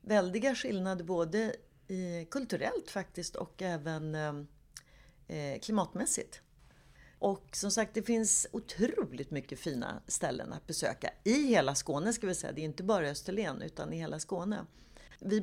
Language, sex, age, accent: Swedish, female, 40-59, native